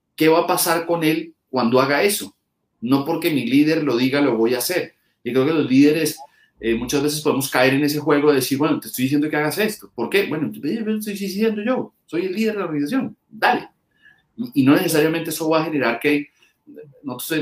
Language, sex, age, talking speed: Spanish, male, 30-49, 220 wpm